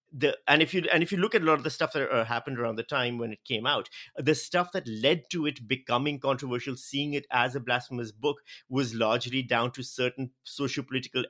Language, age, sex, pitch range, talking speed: English, 50-69, male, 120-145 Hz, 235 wpm